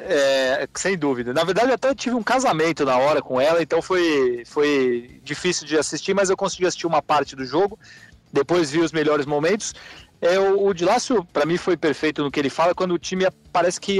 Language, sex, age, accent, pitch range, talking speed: Portuguese, male, 40-59, Brazilian, 150-200 Hz, 205 wpm